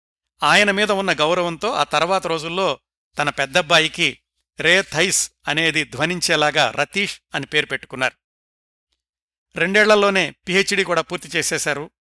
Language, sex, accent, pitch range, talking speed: Telugu, male, native, 145-180 Hz, 105 wpm